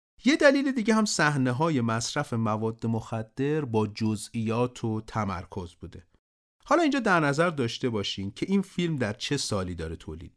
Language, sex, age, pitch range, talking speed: Persian, male, 40-59, 105-140 Hz, 160 wpm